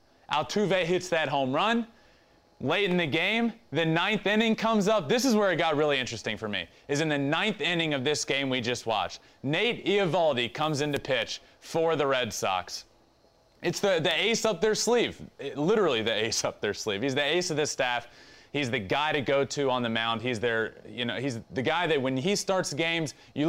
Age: 30-49